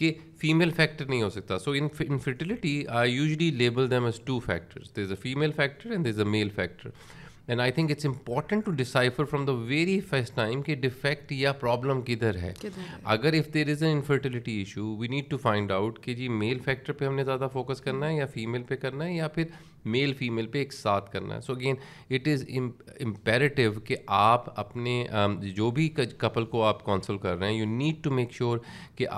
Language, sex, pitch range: Urdu, male, 110-135 Hz